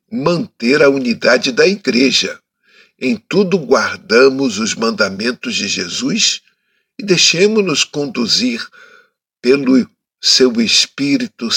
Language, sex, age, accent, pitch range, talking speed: Portuguese, male, 60-79, Brazilian, 160-260 Hz, 95 wpm